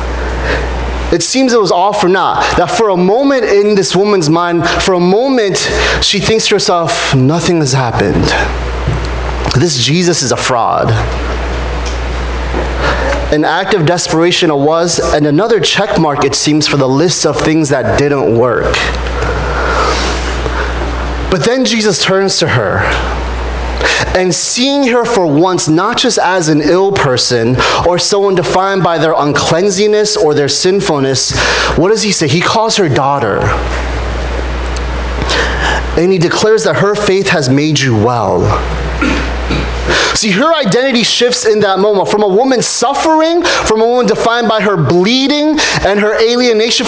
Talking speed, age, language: 145 wpm, 30-49, English